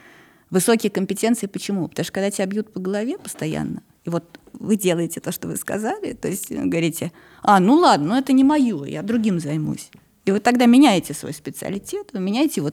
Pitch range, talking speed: 175-245 Hz, 195 wpm